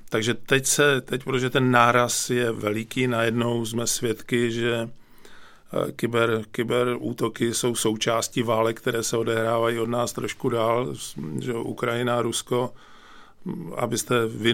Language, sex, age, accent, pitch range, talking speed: Czech, male, 40-59, native, 115-125 Hz, 130 wpm